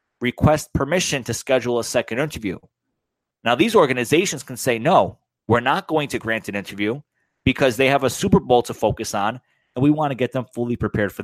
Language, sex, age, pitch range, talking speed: English, male, 30-49, 120-155 Hz, 205 wpm